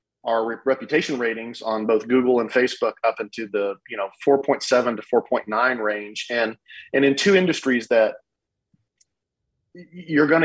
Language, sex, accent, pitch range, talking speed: English, male, American, 110-135 Hz, 145 wpm